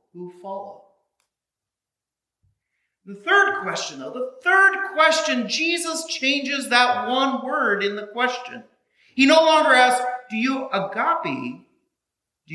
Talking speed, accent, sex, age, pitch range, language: 120 wpm, American, male, 40-59, 160-260 Hz, English